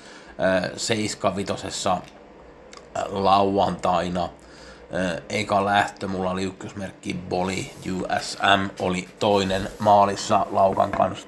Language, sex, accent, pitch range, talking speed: Finnish, male, native, 100-110 Hz, 75 wpm